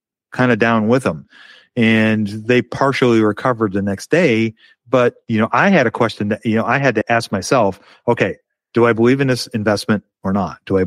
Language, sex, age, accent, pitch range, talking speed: English, male, 40-59, American, 105-120 Hz, 210 wpm